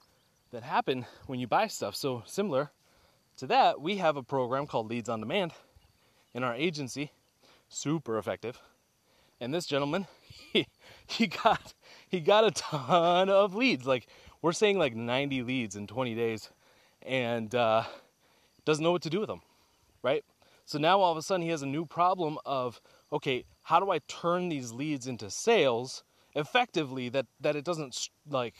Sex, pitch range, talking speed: male, 125-170 Hz, 170 wpm